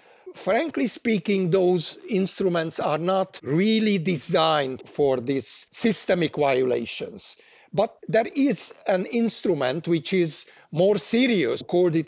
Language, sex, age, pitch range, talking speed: English, male, 60-79, 160-205 Hz, 110 wpm